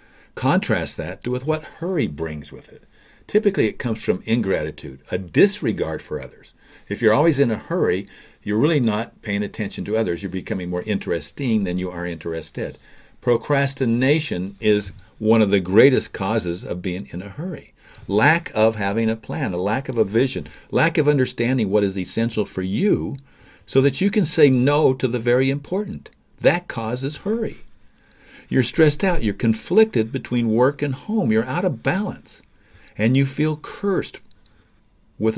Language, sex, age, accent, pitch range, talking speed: English, male, 60-79, American, 100-145 Hz, 170 wpm